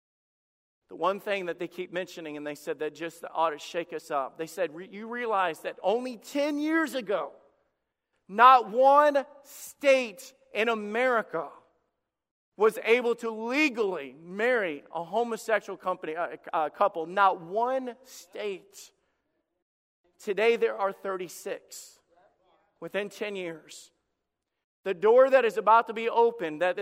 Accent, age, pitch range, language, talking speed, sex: American, 40-59, 185-240 Hz, English, 135 wpm, male